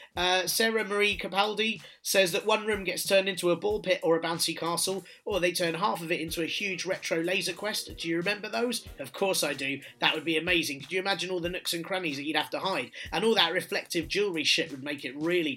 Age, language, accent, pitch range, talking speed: 30-49, English, British, 165-220 Hz, 250 wpm